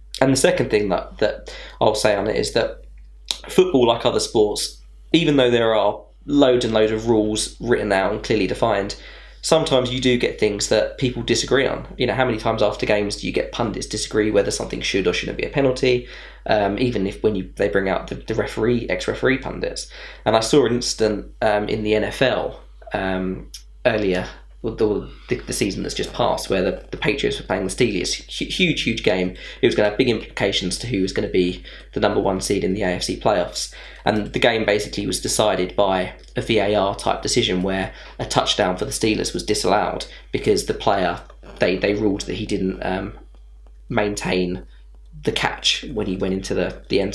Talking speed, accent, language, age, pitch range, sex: 205 wpm, British, English, 20-39, 95-125 Hz, male